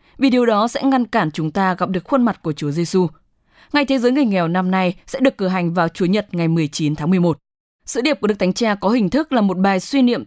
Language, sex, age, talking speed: English, female, 20-39, 275 wpm